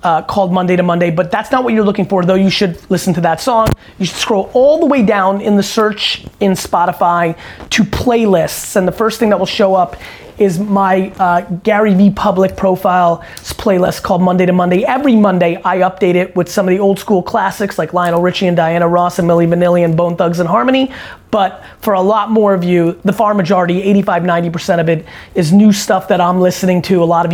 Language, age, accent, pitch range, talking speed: English, 30-49, American, 175-205 Hz, 225 wpm